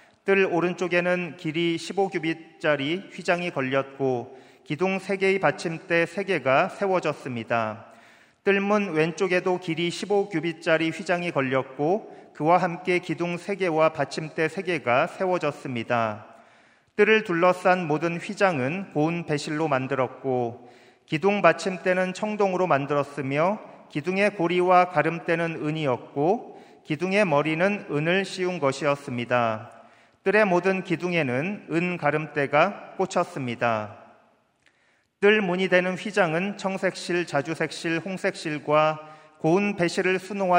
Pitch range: 145-185 Hz